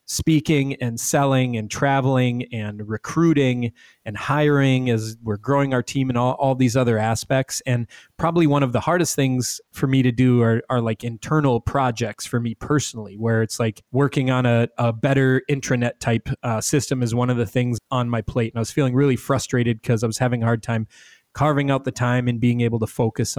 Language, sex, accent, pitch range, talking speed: English, male, American, 115-135 Hz, 210 wpm